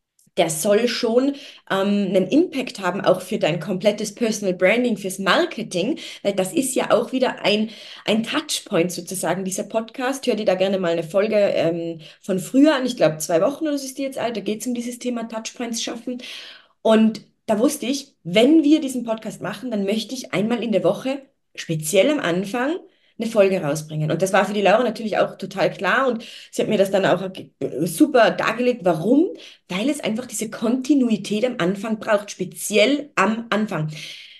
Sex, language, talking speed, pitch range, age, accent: female, German, 190 wpm, 180-255 Hz, 20-39, German